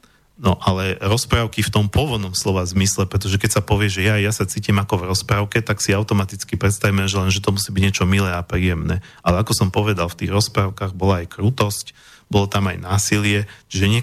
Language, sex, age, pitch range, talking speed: Slovak, male, 40-59, 90-105 Hz, 215 wpm